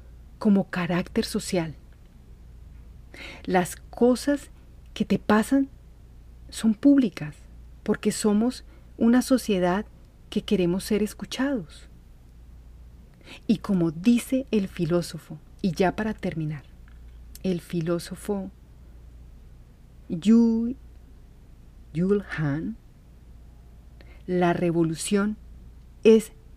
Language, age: Spanish, 40-59